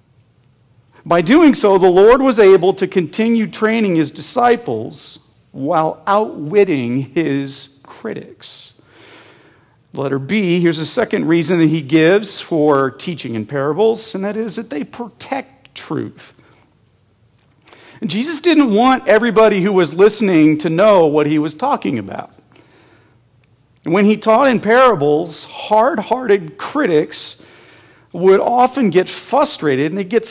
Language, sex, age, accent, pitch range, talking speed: English, male, 40-59, American, 140-215 Hz, 125 wpm